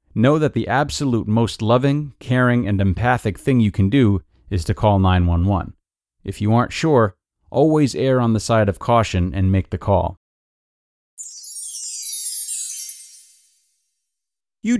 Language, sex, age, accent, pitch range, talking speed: English, male, 30-49, American, 95-130 Hz, 135 wpm